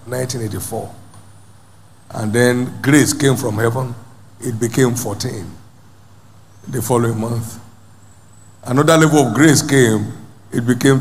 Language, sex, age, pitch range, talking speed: English, male, 50-69, 100-140 Hz, 110 wpm